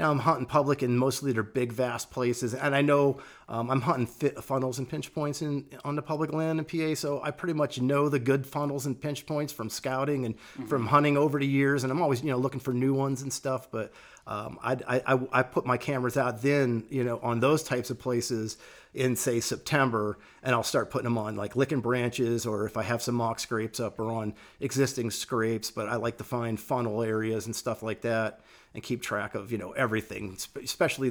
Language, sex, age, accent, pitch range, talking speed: English, male, 40-59, American, 115-135 Hz, 230 wpm